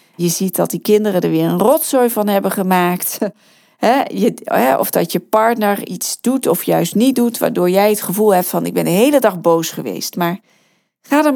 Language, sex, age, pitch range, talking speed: Dutch, female, 40-59, 185-255 Hz, 200 wpm